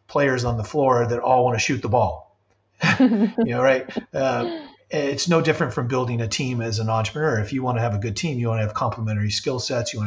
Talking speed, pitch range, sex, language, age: 250 wpm, 110-135 Hz, male, English, 40-59